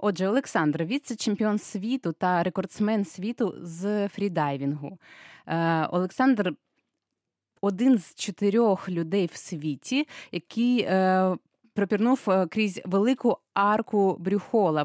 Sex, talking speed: female, 95 wpm